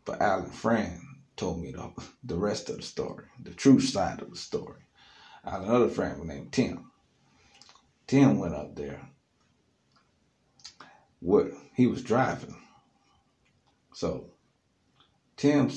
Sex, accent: male, American